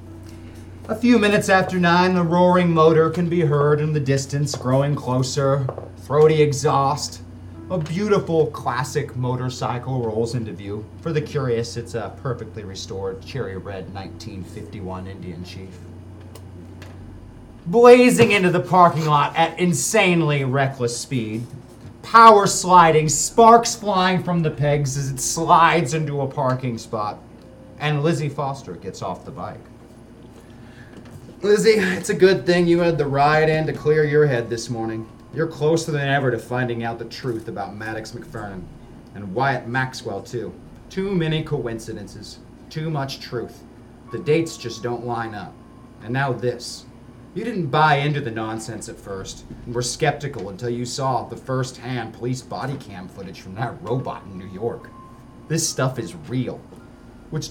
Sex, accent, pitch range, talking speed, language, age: male, American, 115-155 Hz, 150 wpm, English, 30-49